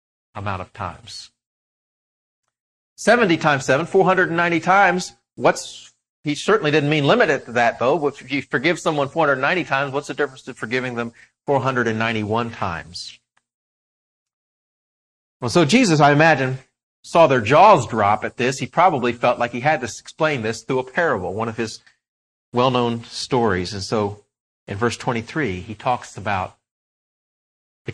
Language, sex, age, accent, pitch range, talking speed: English, male, 40-59, American, 115-160 Hz, 170 wpm